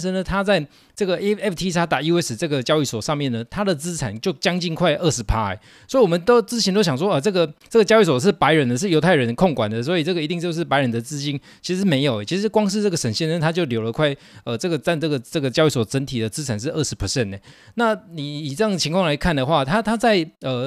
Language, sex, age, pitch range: Chinese, male, 20-39, 135-185 Hz